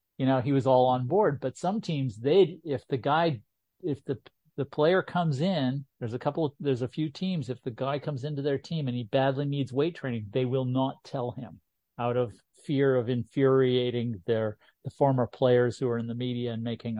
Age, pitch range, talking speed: 50-69, 120-135 Hz, 220 wpm